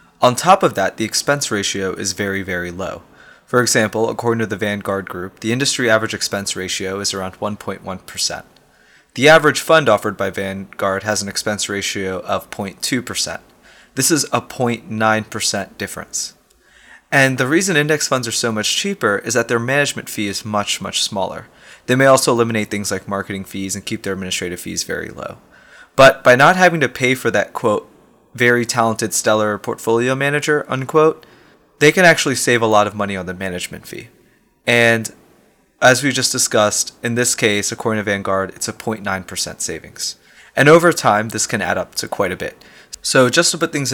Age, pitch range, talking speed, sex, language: 20-39, 100-130 Hz, 185 wpm, male, English